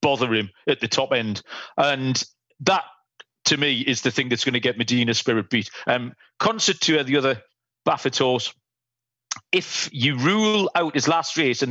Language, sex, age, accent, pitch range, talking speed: English, male, 40-59, British, 120-155 Hz, 175 wpm